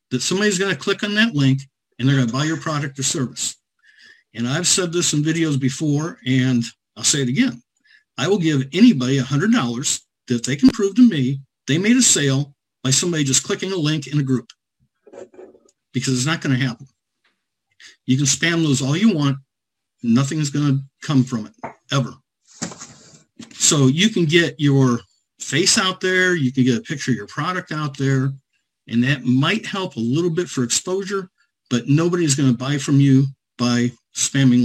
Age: 50-69